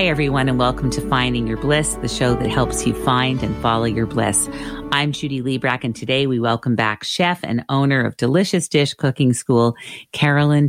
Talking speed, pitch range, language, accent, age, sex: 195 wpm, 115-140 Hz, English, American, 40-59, female